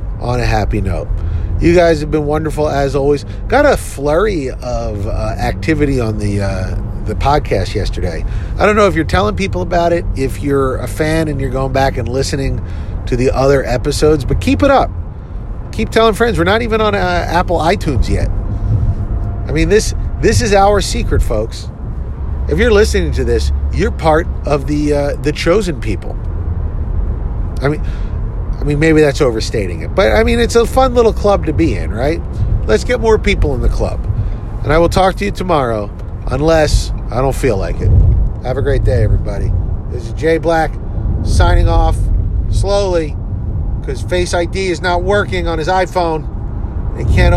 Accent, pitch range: American, 95-150 Hz